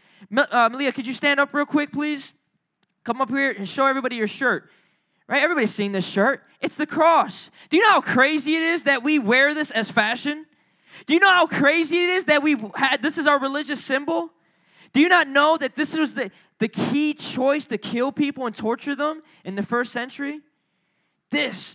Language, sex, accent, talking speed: English, male, American, 205 wpm